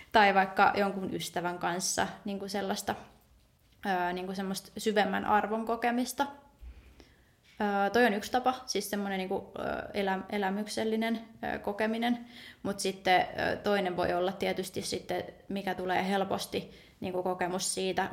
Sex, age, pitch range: female, 20-39, 195-225 Hz